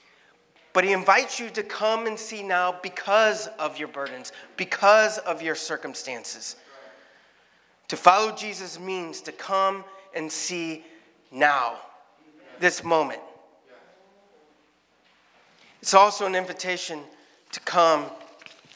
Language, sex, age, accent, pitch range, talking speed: English, male, 30-49, American, 155-195 Hz, 110 wpm